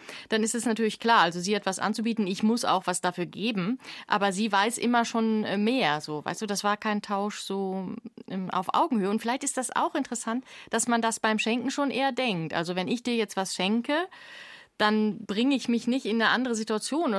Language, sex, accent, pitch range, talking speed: German, female, German, 210-265 Hz, 215 wpm